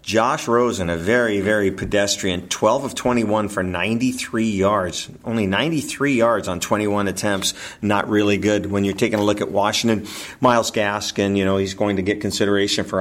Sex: male